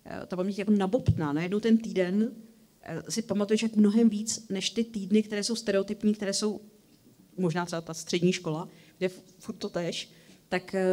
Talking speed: 170 wpm